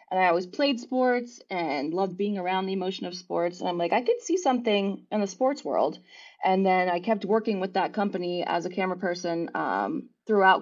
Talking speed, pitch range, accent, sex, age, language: 215 wpm, 180-235 Hz, American, female, 20-39, English